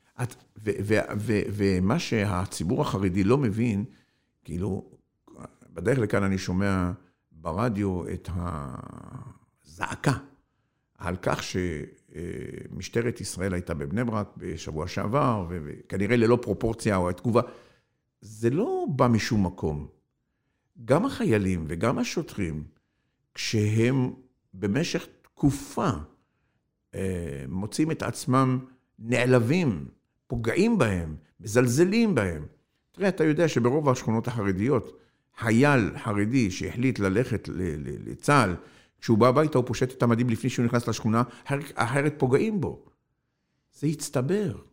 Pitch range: 100-130 Hz